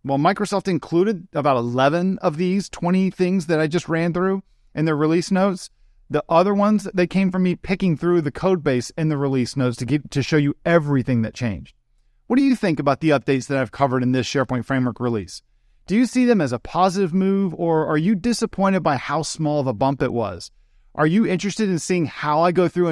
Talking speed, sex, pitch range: 225 wpm, male, 130-180 Hz